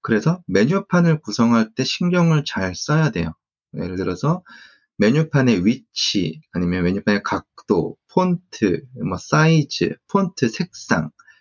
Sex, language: male, Korean